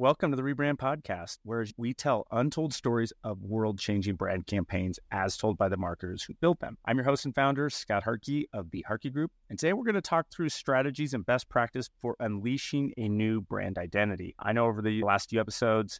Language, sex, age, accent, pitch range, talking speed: English, male, 30-49, American, 100-130 Hz, 220 wpm